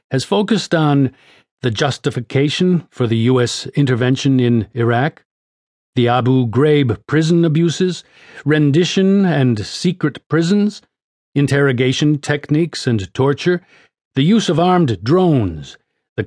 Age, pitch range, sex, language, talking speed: 50-69, 120-165 Hz, male, English, 110 wpm